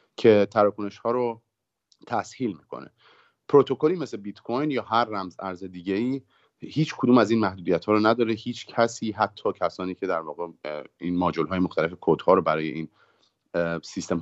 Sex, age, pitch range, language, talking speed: male, 30-49, 85-110 Hz, Persian, 175 wpm